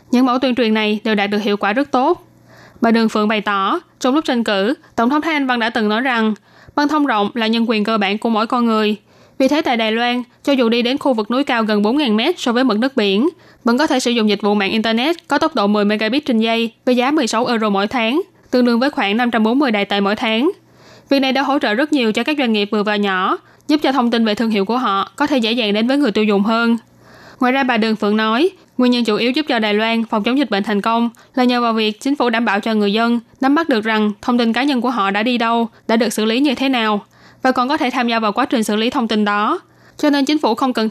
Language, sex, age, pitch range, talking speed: Vietnamese, female, 10-29, 215-265 Hz, 290 wpm